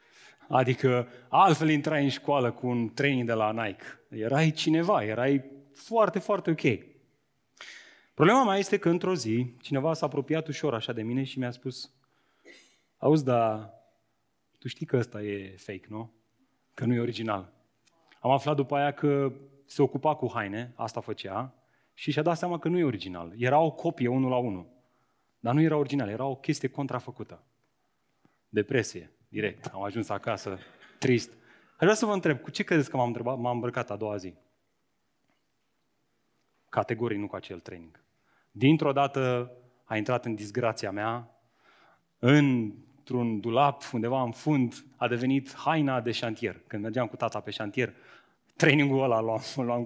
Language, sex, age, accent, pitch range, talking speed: Romanian, male, 30-49, native, 115-150 Hz, 160 wpm